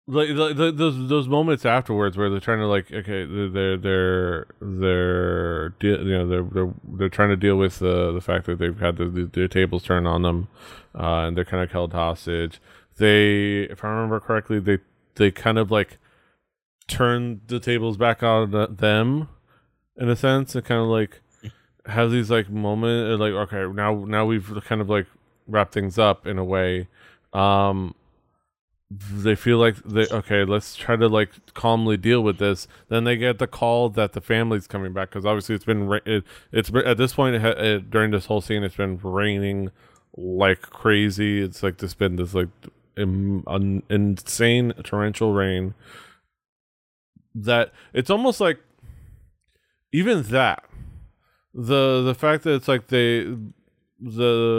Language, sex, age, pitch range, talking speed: English, male, 20-39, 95-115 Hz, 170 wpm